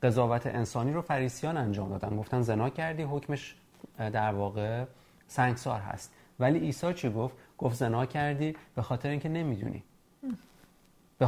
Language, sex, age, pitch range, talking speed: Persian, male, 30-49, 110-145 Hz, 140 wpm